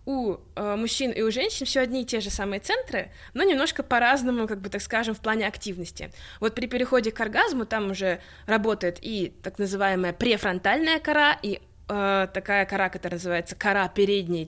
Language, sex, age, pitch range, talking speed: Russian, female, 20-39, 195-250 Hz, 180 wpm